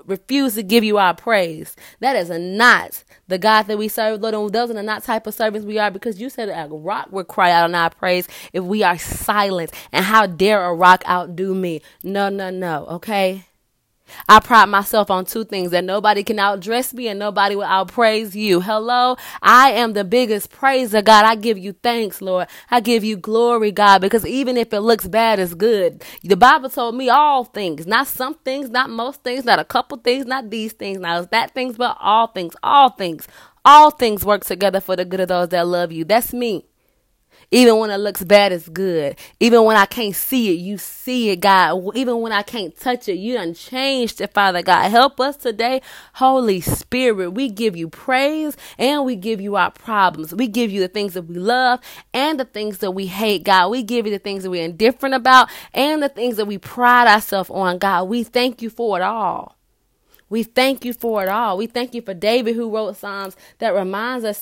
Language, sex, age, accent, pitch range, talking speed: English, female, 20-39, American, 190-245 Hz, 220 wpm